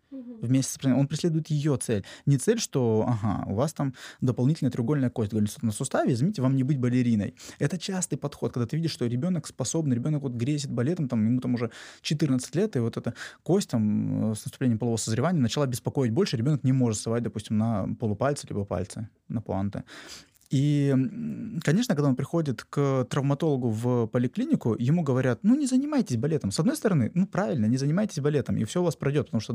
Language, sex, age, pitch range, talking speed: Russian, male, 20-39, 115-155 Hz, 195 wpm